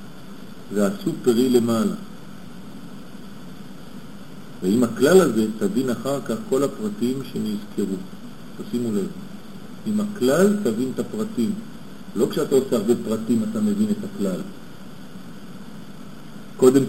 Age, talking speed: 50-69, 105 wpm